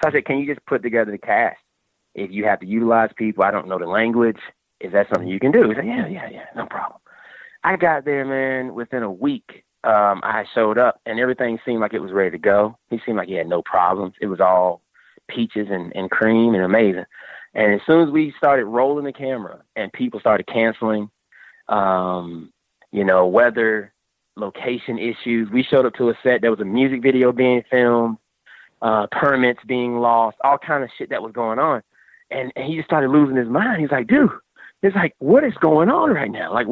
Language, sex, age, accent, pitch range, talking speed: English, male, 30-49, American, 110-145 Hz, 220 wpm